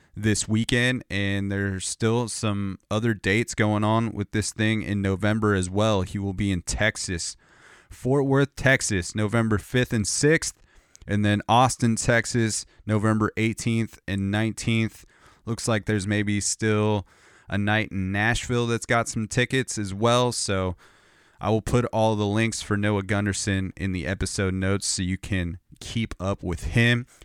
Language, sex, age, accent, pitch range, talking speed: English, male, 30-49, American, 100-115 Hz, 160 wpm